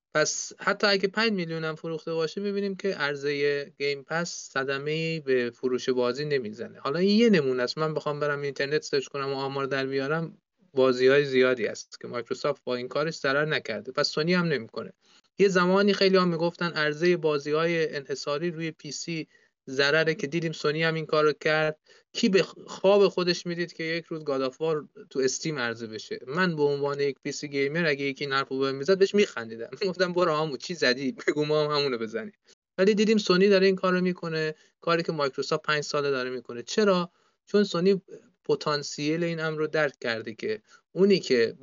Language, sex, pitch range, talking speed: Persian, male, 135-185 Hz, 190 wpm